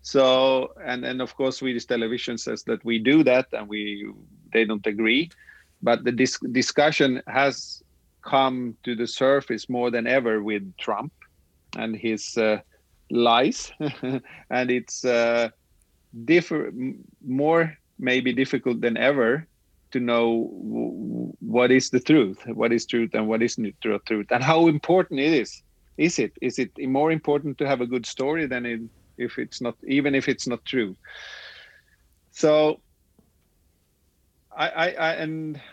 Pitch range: 115-135 Hz